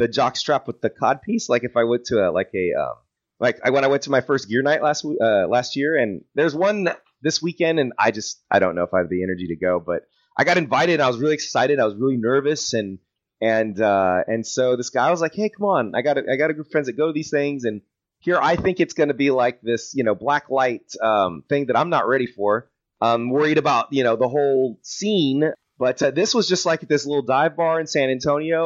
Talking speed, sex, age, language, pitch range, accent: 265 wpm, male, 30-49, English, 115-160 Hz, American